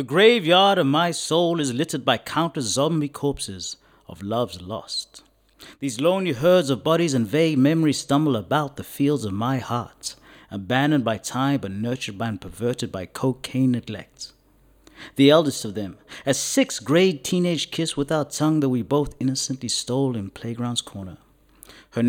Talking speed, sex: 160 wpm, male